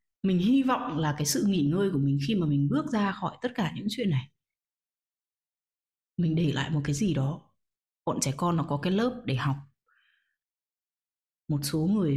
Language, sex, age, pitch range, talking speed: Vietnamese, female, 20-39, 180-250 Hz, 195 wpm